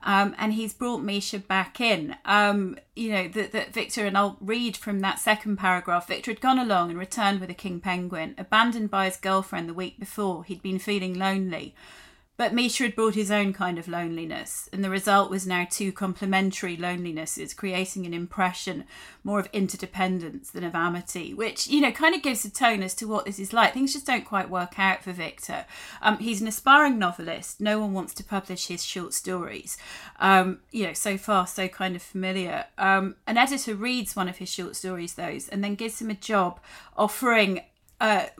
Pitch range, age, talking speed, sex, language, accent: 185-245 Hz, 30-49, 200 wpm, female, English, British